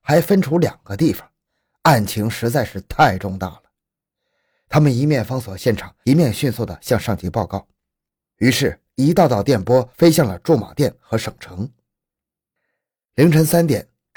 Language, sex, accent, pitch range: Chinese, male, native, 110-155 Hz